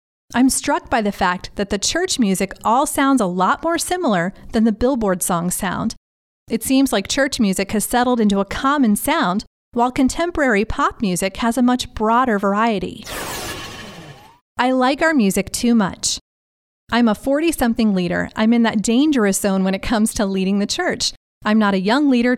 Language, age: English, 30-49